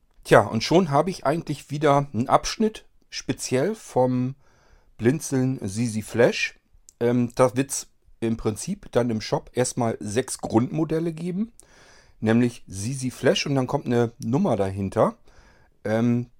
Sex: male